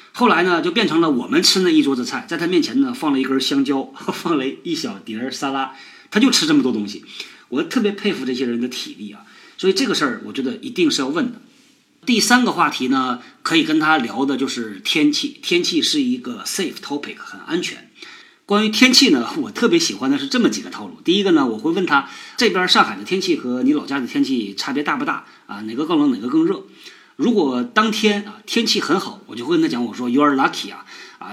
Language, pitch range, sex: Chinese, 185-305 Hz, male